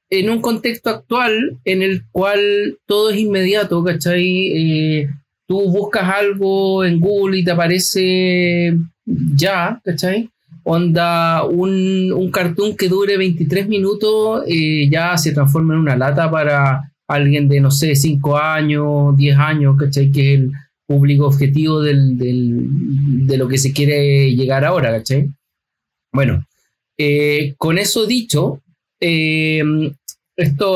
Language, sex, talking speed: Spanish, male, 135 wpm